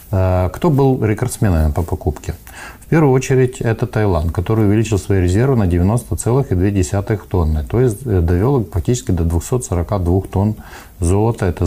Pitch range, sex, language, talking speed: 90-110 Hz, male, Ukrainian, 135 wpm